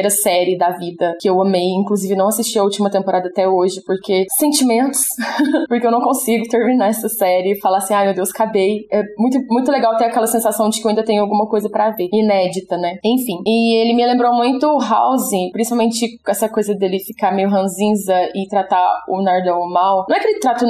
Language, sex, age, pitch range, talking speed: Portuguese, female, 10-29, 195-250 Hz, 215 wpm